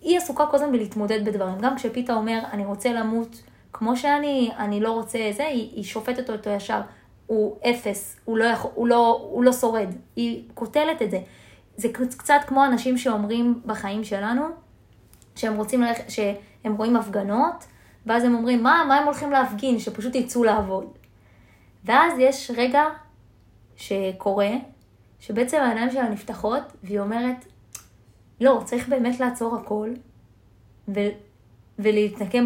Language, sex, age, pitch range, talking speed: Hebrew, female, 20-39, 205-250 Hz, 140 wpm